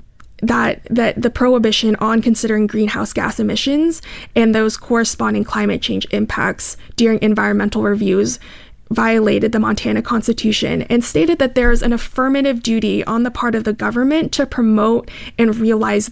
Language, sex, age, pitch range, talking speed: English, female, 20-39, 215-245 Hz, 150 wpm